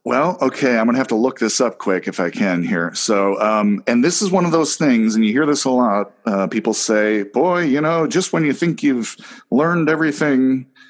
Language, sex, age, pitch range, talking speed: English, male, 40-59, 100-165 Hz, 230 wpm